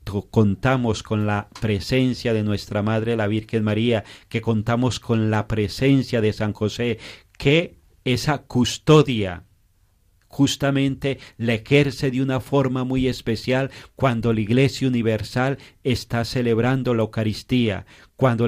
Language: Spanish